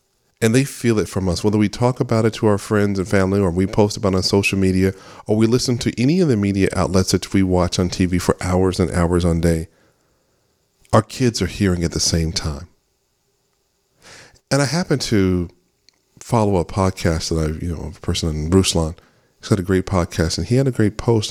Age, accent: 40-59, American